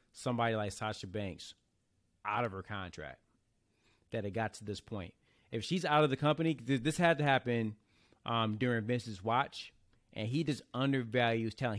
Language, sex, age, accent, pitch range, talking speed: English, male, 30-49, American, 110-140 Hz, 170 wpm